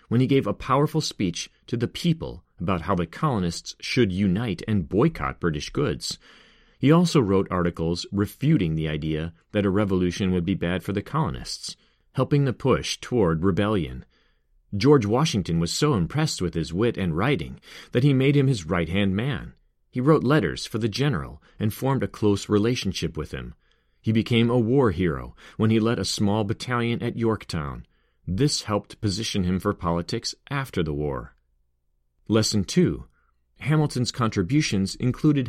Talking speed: 165 wpm